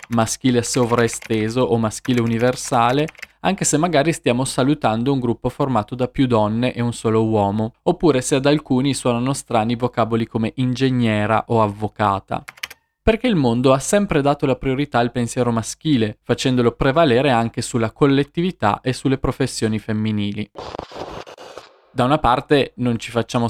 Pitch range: 115-145 Hz